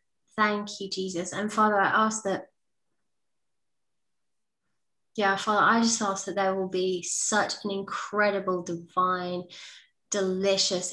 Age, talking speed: 20-39, 120 wpm